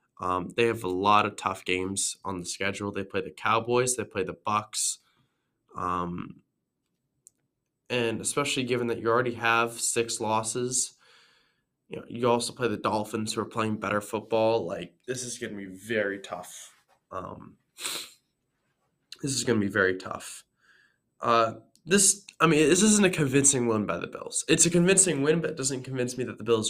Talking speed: 180 wpm